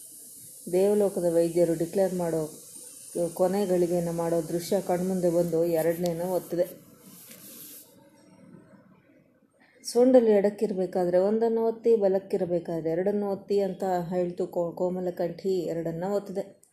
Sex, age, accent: female, 20-39, native